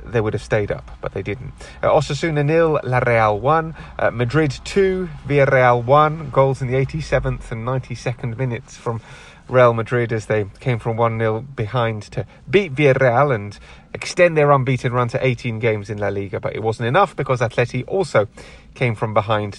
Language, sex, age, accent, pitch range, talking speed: English, male, 30-49, British, 115-140 Hz, 180 wpm